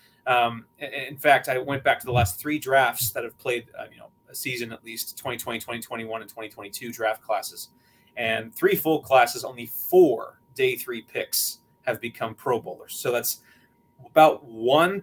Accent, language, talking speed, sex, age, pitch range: American, English, 175 wpm, male, 20-39, 115-140 Hz